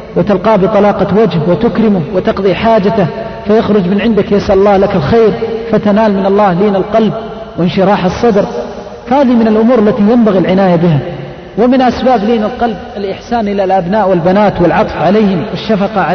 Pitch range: 190-220 Hz